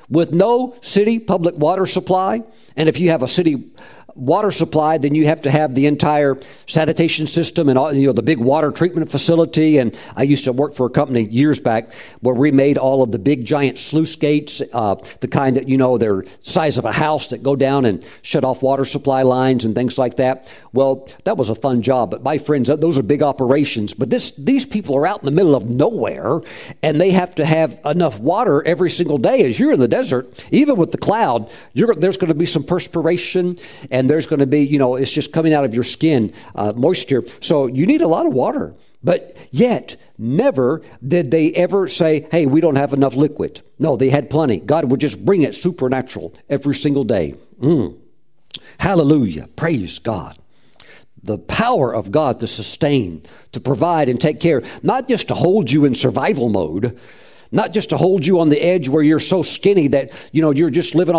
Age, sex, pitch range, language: 50-69, male, 130-165 Hz, English